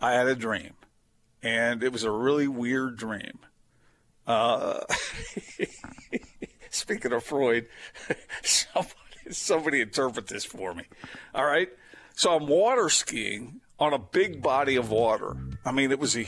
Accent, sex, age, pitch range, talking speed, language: American, male, 50-69, 115-145 Hz, 140 wpm, English